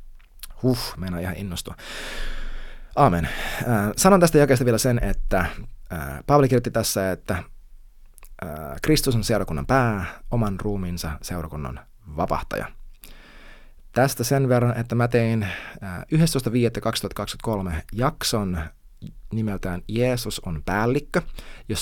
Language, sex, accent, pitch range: Finnish, male, native, 95-130 Hz